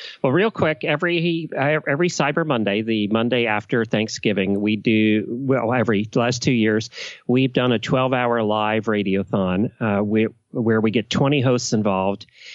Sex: male